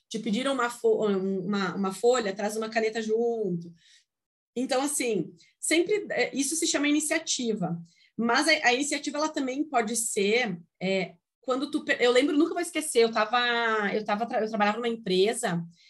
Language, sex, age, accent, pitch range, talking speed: Portuguese, female, 30-49, Brazilian, 210-310 Hz, 160 wpm